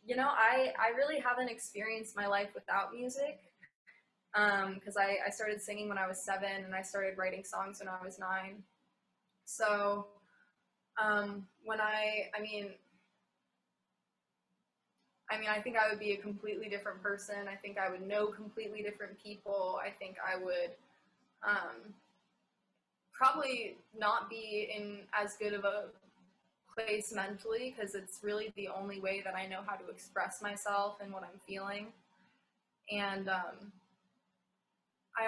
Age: 20-39